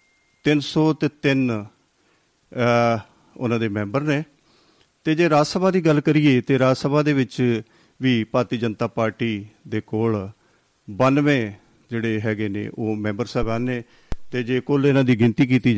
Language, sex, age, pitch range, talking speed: Punjabi, male, 50-69, 110-135 Hz, 145 wpm